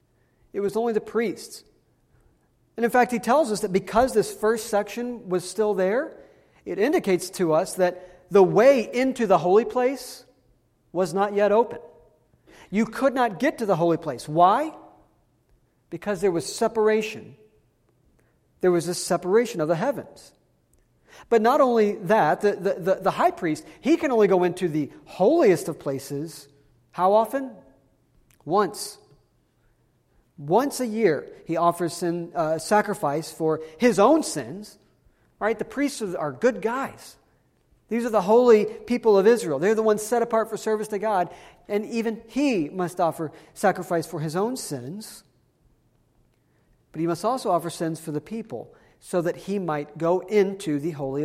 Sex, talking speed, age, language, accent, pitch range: male, 160 wpm, 40-59, English, American, 160-225 Hz